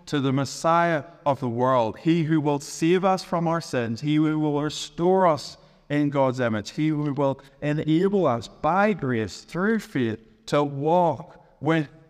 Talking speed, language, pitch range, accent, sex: 170 wpm, English, 130-170 Hz, American, male